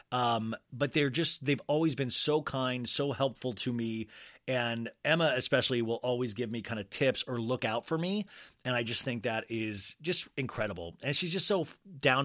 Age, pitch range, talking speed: 30-49, 115-175 Hz, 200 wpm